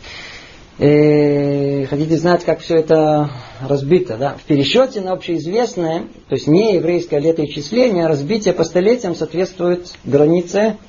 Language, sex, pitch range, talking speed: Russian, male, 145-205 Hz, 120 wpm